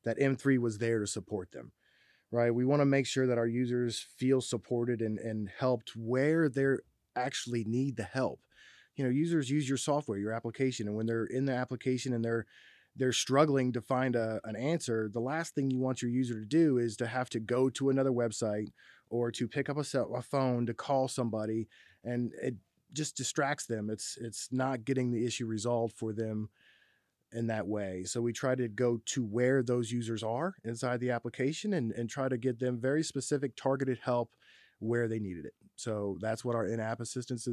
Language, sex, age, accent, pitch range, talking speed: English, male, 20-39, American, 115-130 Hz, 205 wpm